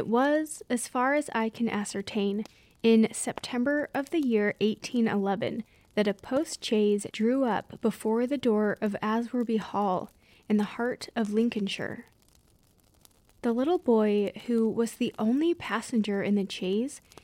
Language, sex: English, female